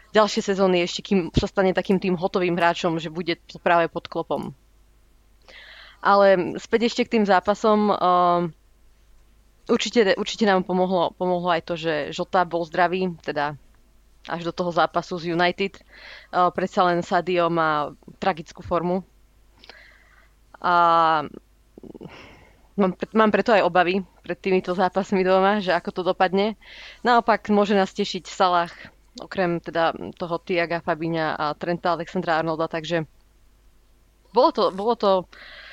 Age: 20-39